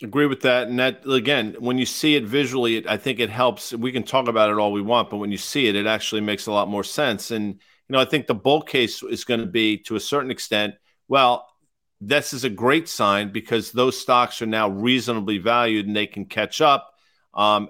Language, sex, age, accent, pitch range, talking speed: English, male, 50-69, American, 110-140 Hz, 240 wpm